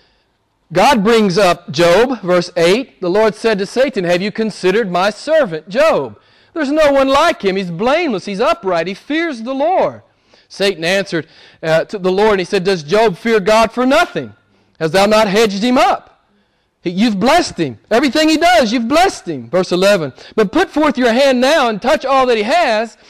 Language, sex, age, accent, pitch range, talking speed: English, male, 40-59, American, 170-220 Hz, 190 wpm